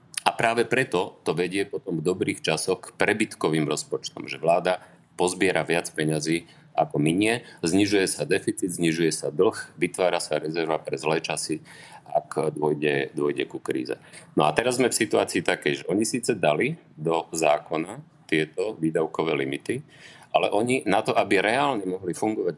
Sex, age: male, 40-59